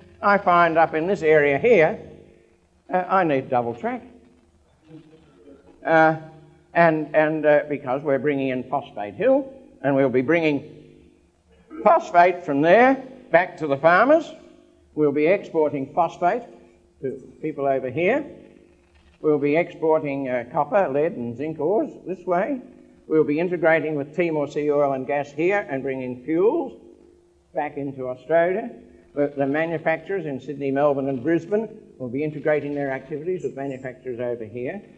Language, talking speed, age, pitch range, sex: English, 140 wpm, 60-79, 135-170 Hz, male